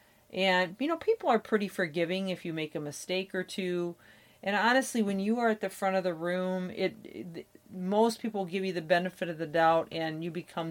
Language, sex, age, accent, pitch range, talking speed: English, female, 40-59, American, 155-195 Hz, 220 wpm